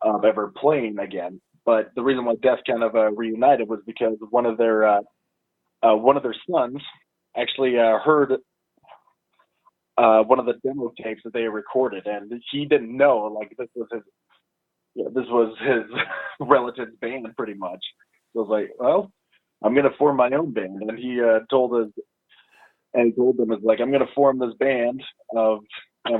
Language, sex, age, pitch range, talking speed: English, male, 20-39, 110-130 Hz, 185 wpm